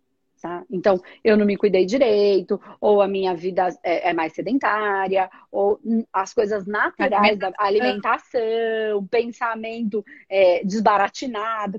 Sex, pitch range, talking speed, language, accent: female, 200-285 Hz, 110 wpm, Portuguese, Brazilian